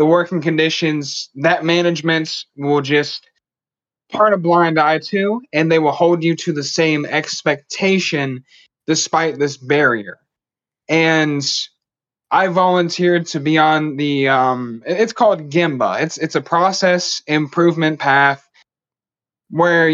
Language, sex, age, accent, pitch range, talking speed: English, male, 20-39, American, 150-175 Hz, 125 wpm